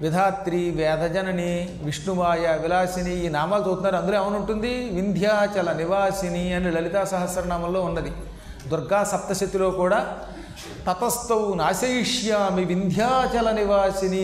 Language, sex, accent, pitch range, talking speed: Telugu, male, native, 170-205 Hz, 95 wpm